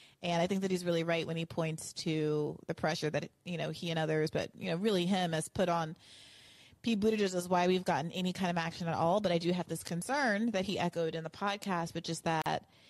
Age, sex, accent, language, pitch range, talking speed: 30-49, female, American, English, 165-190 Hz, 255 wpm